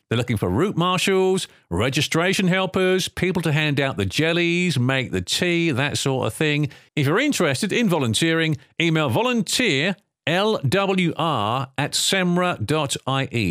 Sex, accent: male, British